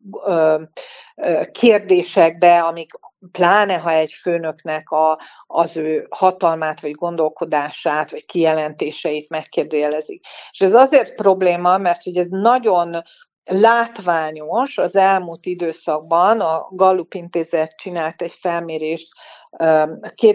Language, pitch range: Hungarian, 160-210 Hz